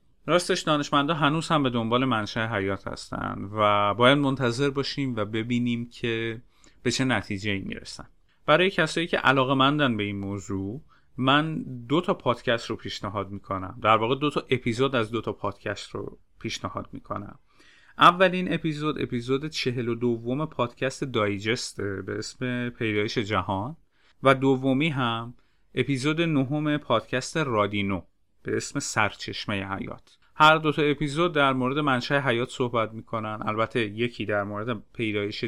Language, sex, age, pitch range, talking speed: Persian, male, 30-49, 105-140 Hz, 145 wpm